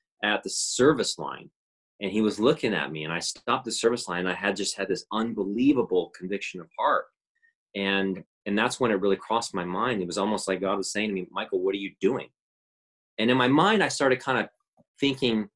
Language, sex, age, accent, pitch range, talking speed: English, male, 30-49, American, 105-145 Hz, 225 wpm